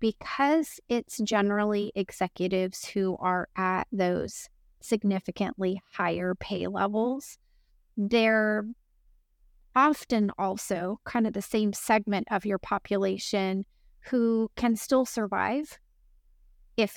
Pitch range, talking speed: 190-225 Hz, 100 wpm